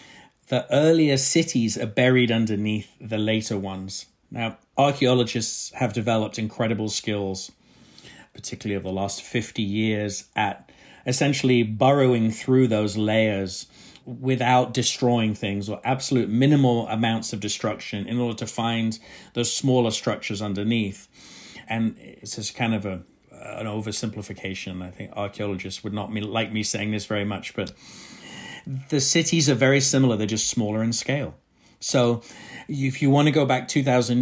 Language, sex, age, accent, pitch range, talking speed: English, male, 40-59, British, 105-125 Hz, 140 wpm